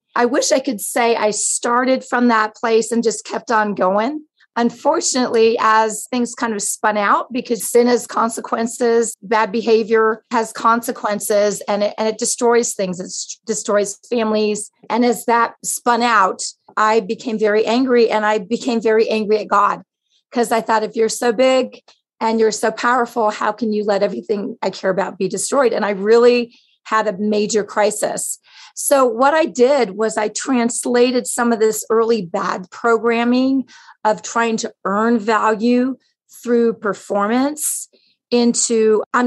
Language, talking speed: English, 160 wpm